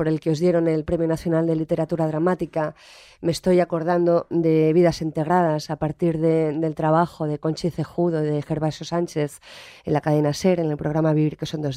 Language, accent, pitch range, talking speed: Spanish, Spanish, 160-185 Hz, 200 wpm